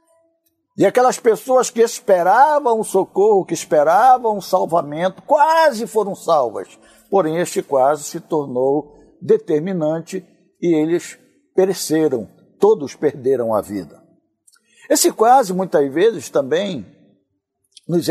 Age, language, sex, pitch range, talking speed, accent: 60-79, Portuguese, male, 155-230 Hz, 105 wpm, Brazilian